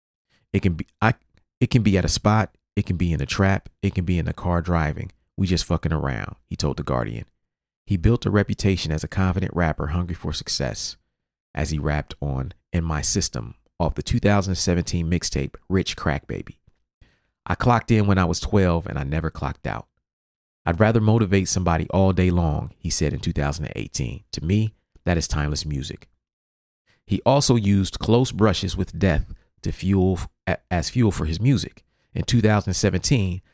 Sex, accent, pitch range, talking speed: male, American, 80-100 Hz, 180 wpm